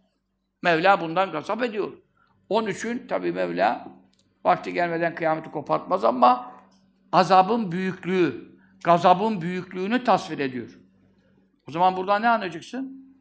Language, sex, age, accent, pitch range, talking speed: Turkish, male, 60-79, native, 155-195 Hz, 105 wpm